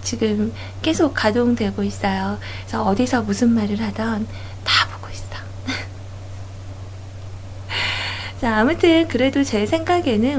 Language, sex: Korean, female